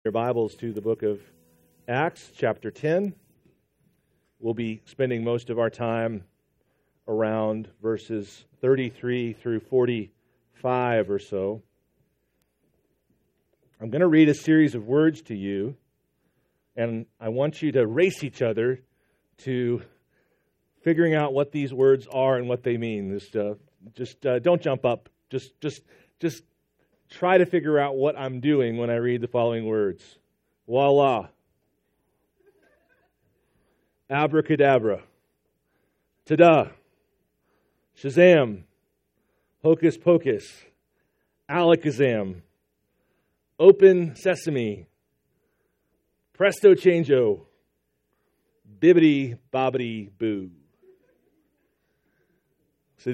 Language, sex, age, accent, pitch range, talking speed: English, male, 40-59, American, 110-150 Hz, 100 wpm